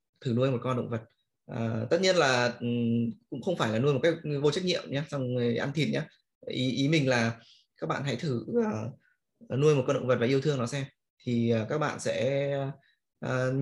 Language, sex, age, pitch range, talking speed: Vietnamese, male, 20-39, 125-150 Hz, 225 wpm